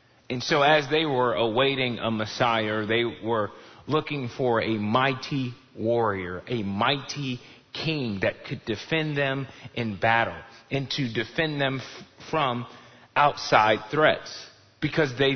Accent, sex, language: American, male, English